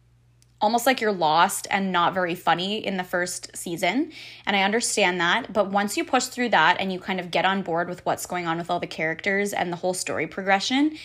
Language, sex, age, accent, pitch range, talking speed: English, female, 20-39, American, 170-225 Hz, 230 wpm